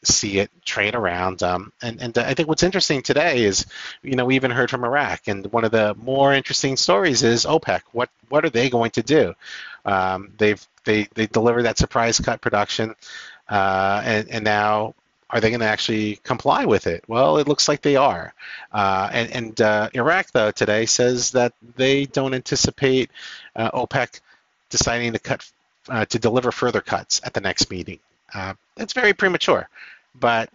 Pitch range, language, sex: 100-130 Hz, English, male